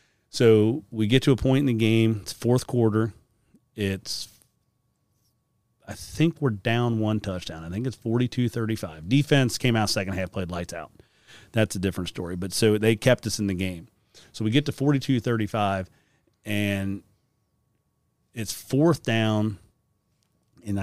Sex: male